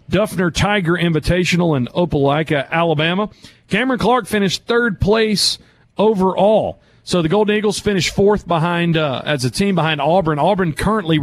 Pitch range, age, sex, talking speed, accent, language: 145-190 Hz, 40-59, male, 145 wpm, American, English